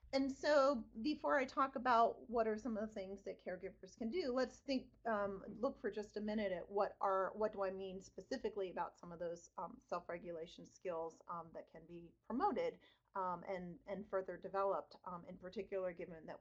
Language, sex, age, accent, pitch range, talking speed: English, female, 30-49, American, 185-250 Hz, 195 wpm